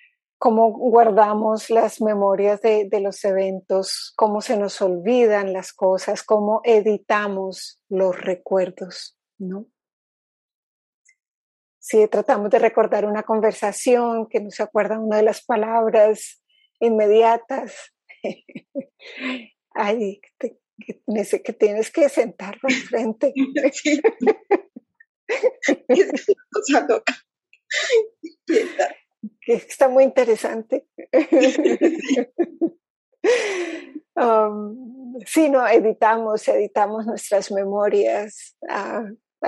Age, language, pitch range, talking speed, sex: 30-49, English, 205-265 Hz, 80 wpm, female